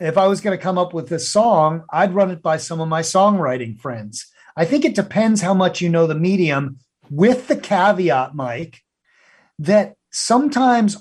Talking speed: 190 wpm